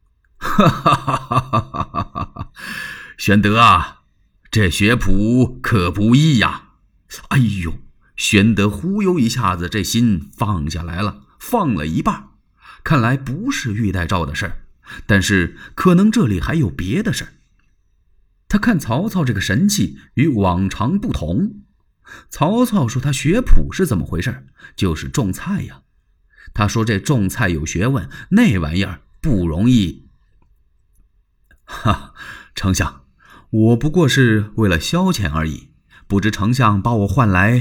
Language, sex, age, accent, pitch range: Chinese, male, 30-49, native, 95-130 Hz